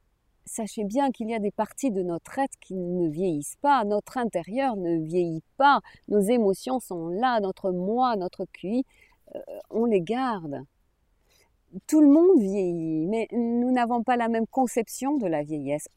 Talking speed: 165 wpm